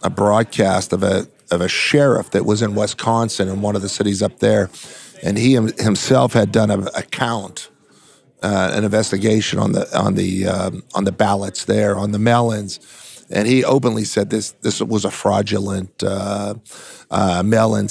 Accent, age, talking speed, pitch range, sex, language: American, 50-69, 175 wpm, 100-120 Hz, male, English